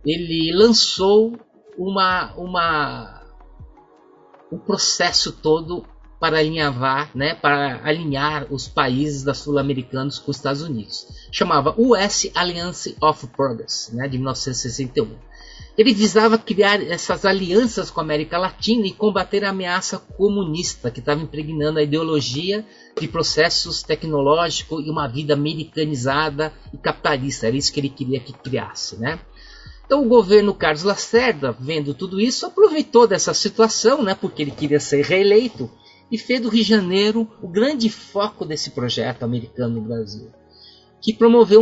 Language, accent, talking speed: Portuguese, Brazilian, 140 wpm